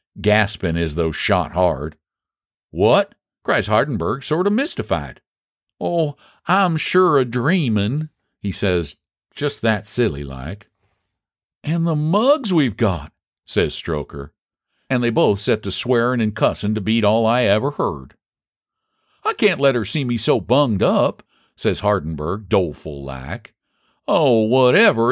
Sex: male